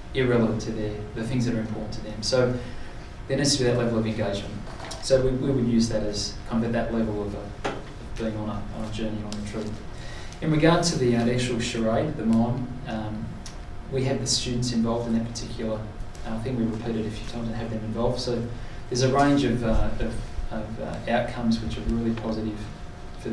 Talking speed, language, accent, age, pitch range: 225 wpm, English, Australian, 20-39, 110-120 Hz